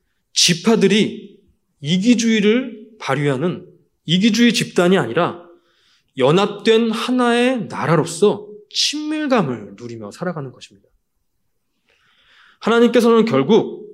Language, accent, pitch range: Korean, native, 145-215 Hz